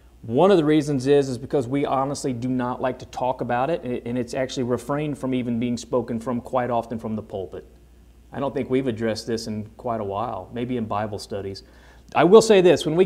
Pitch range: 110-150 Hz